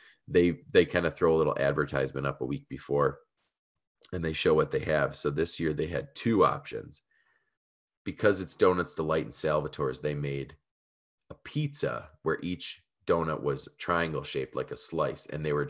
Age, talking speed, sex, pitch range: 30-49, 180 wpm, male, 75-90 Hz